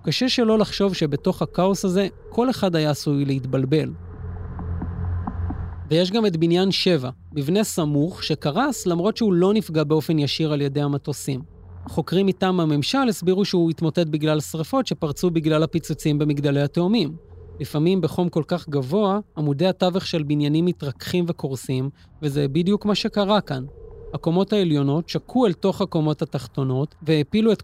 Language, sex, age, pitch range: Hebrew, male, 30-49, 140-185 Hz